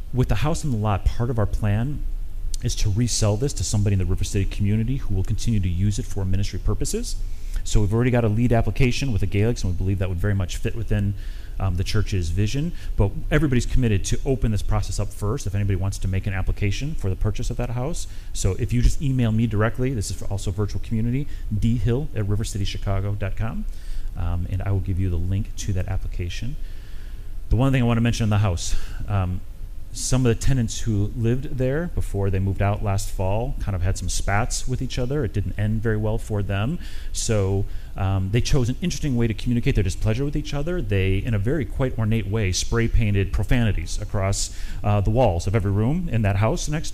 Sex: male